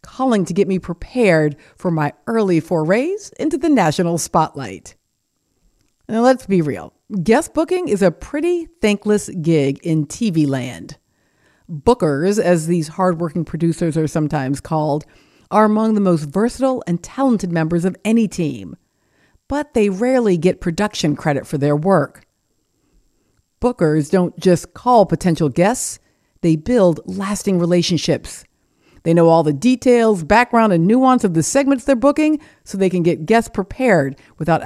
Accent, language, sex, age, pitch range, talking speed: American, English, female, 50-69, 155-220 Hz, 145 wpm